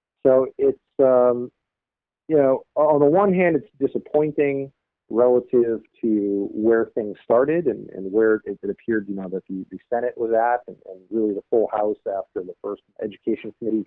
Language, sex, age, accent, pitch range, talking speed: English, male, 40-59, American, 105-130 Hz, 175 wpm